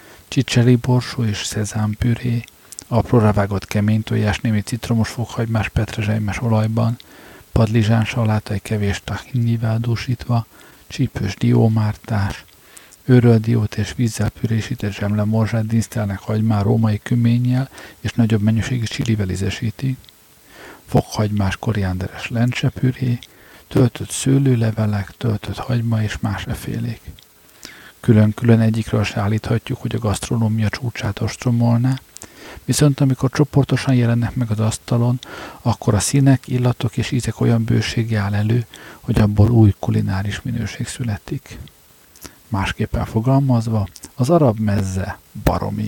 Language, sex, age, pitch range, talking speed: Hungarian, male, 50-69, 105-120 Hz, 105 wpm